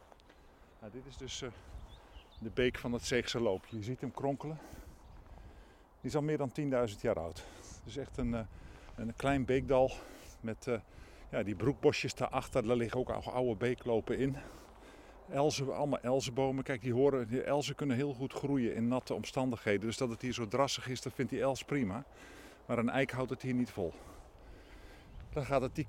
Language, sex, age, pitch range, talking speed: Dutch, male, 50-69, 110-130 Hz, 190 wpm